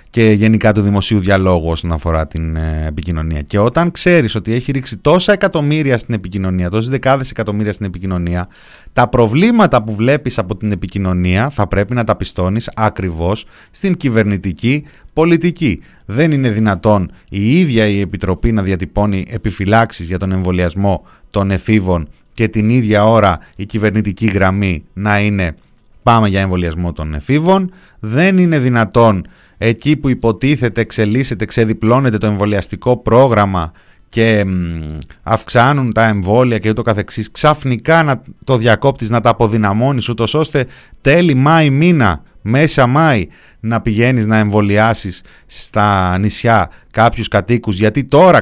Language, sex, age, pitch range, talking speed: Greek, male, 30-49, 100-130 Hz, 140 wpm